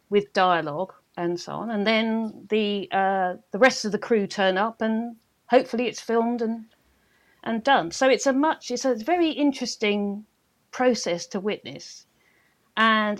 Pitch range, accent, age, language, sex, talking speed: 185-235 Hz, British, 40-59, English, female, 160 wpm